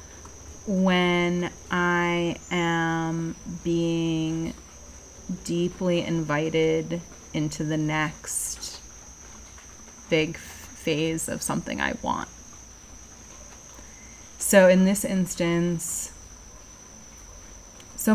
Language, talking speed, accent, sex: English, 65 wpm, American, female